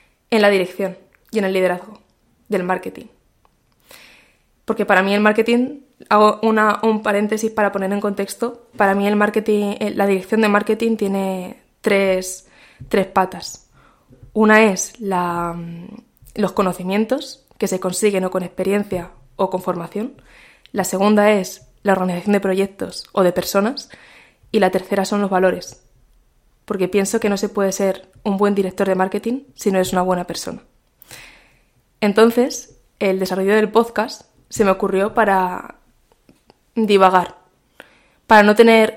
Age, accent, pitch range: 20-39, Spanish, 190-220 Hz